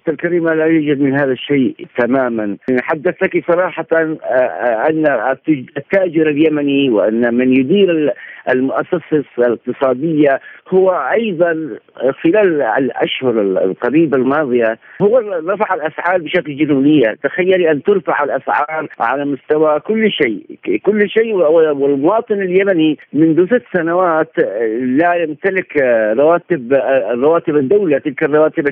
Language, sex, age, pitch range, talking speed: Arabic, male, 50-69, 135-175 Hz, 105 wpm